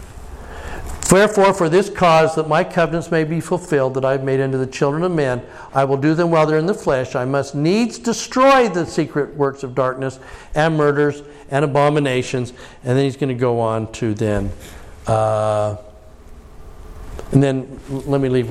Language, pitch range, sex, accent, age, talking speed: English, 110-155 Hz, male, American, 50-69, 185 wpm